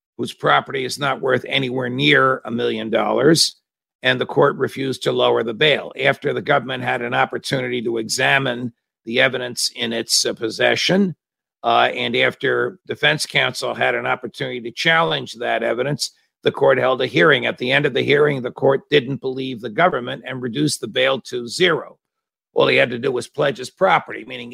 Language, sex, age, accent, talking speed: English, male, 50-69, American, 190 wpm